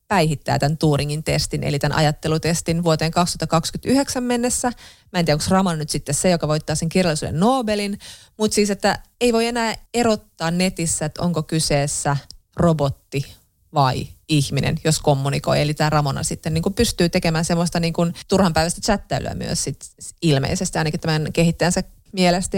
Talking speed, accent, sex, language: 150 wpm, native, female, Finnish